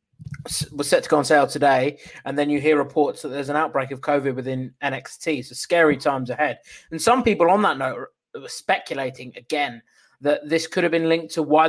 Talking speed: 210 wpm